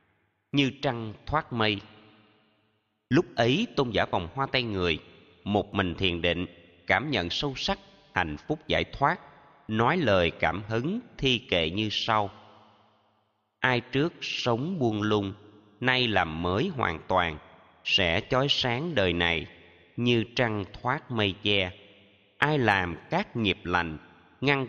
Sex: male